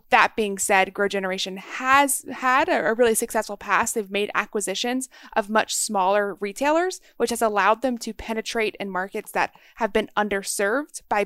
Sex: female